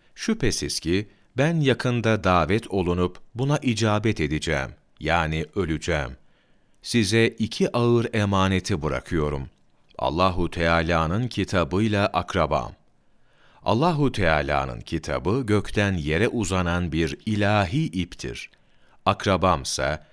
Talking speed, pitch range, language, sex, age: 90 wpm, 80-110 Hz, Turkish, male, 40-59